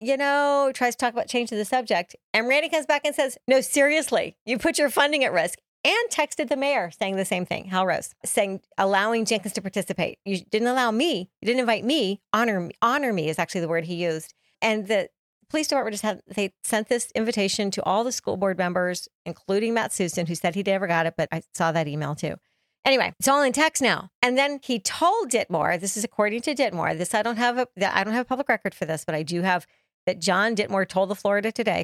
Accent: American